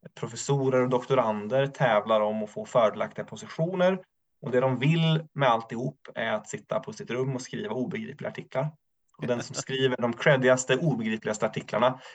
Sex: male